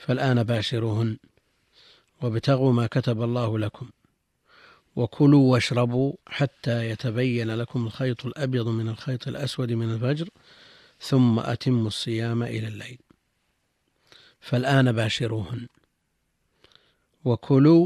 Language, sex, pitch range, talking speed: Arabic, male, 115-135 Hz, 90 wpm